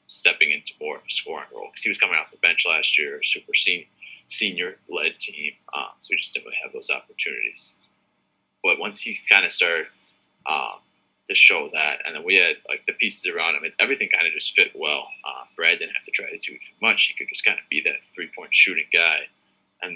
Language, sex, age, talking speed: English, male, 20-39, 235 wpm